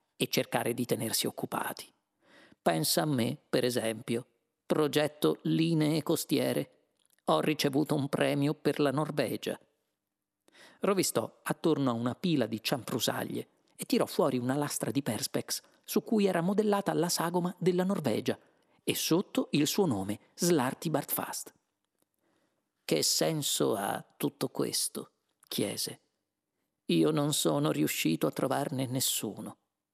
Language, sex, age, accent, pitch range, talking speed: Italian, male, 50-69, native, 130-165 Hz, 120 wpm